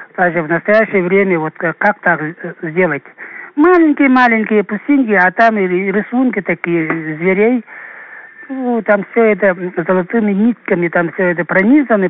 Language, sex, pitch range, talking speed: Russian, male, 165-205 Hz, 135 wpm